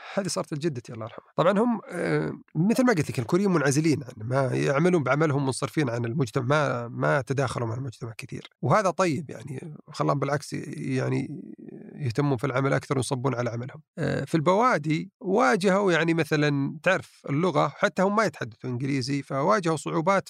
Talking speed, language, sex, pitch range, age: 155 wpm, Arabic, male, 130-165 Hz, 40-59